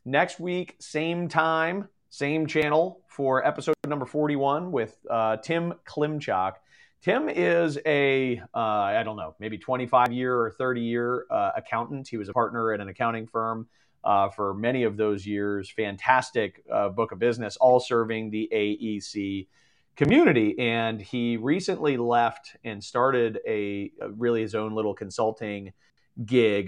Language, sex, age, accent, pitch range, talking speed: English, male, 30-49, American, 100-130 Hz, 145 wpm